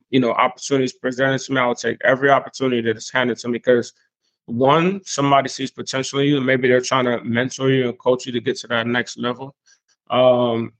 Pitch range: 120-135 Hz